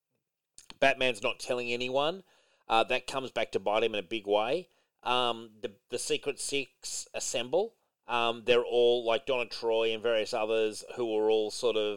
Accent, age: Australian, 30-49